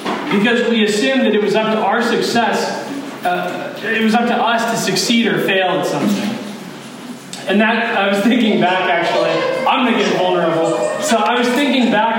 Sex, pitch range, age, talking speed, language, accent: male, 195-240 Hz, 20-39, 190 wpm, English, American